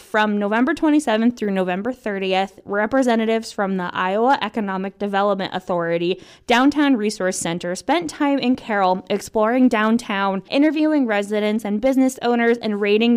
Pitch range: 190-240 Hz